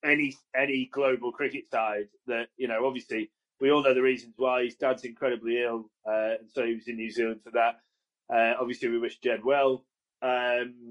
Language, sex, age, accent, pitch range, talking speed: English, male, 30-49, British, 120-145 Hz, 200 wpm